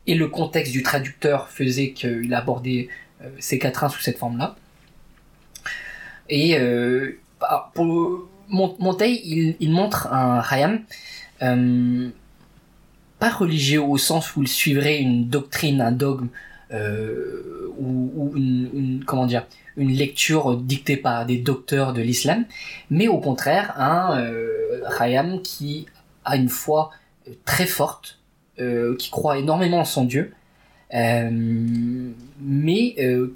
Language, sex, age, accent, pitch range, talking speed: French, male, 20-39, French, 125-160 Hz, 130 wpm